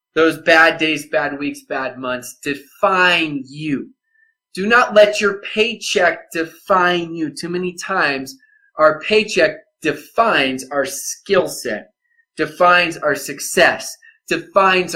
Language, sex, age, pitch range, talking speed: English, male, 20-39, 130-190 Hz, 115 wpm